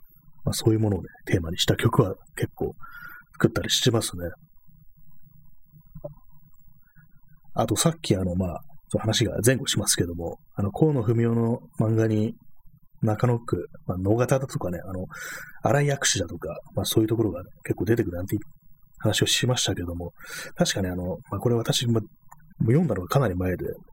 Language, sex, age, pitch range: Japanese, male, 30-49, 100-145 Hz